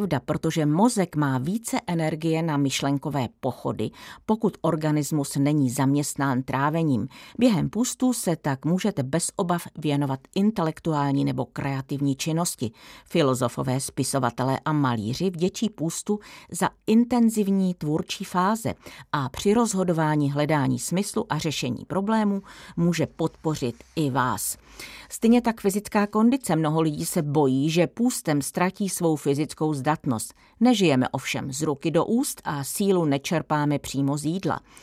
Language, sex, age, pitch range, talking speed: Czech, female, 40-59, 140-190 Hz, 125 wpm